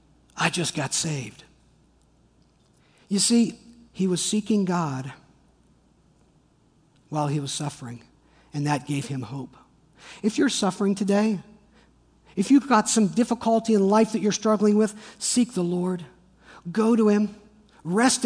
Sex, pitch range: male, 165-215 Hz